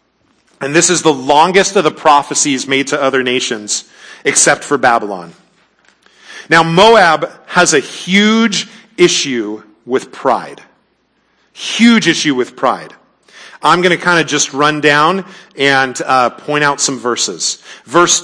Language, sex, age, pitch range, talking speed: English, male, 40-59, 130-170 Hz, 140 wpm